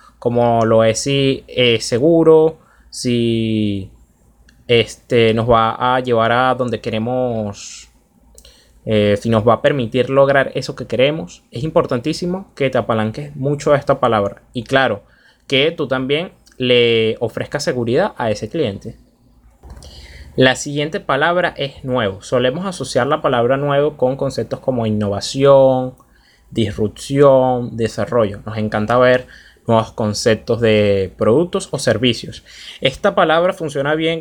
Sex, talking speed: male, 125 wpm